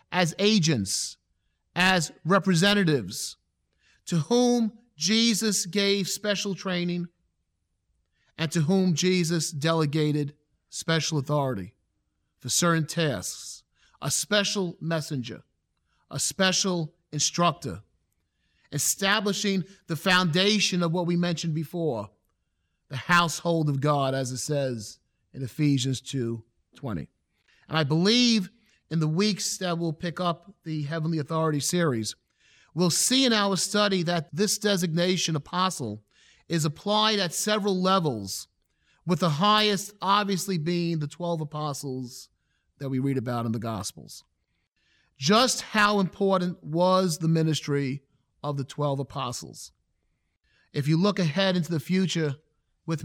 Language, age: English, 40-59